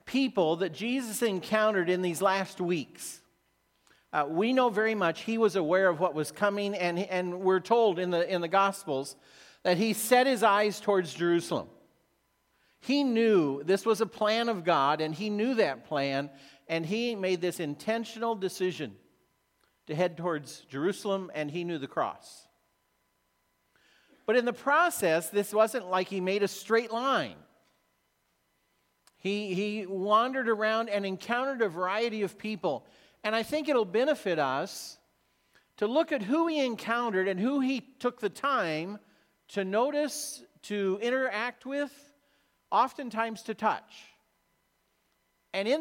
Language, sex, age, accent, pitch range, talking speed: English, male, 50-69, American, 180-230 Hz, 150 wpm